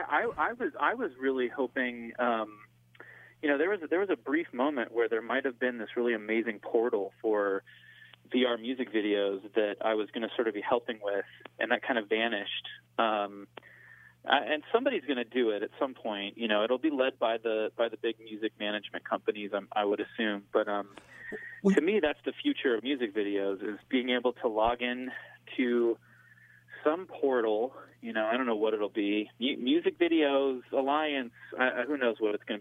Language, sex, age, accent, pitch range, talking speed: English, male, 30-49, American, 110-130 Hz, 200 wpm